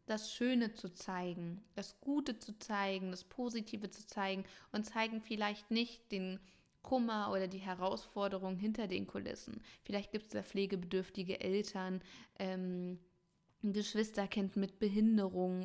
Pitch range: 195-225 Hz